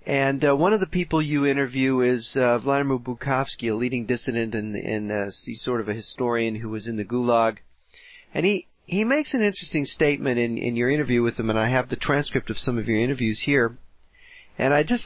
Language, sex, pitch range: English, male, 120-170 Hz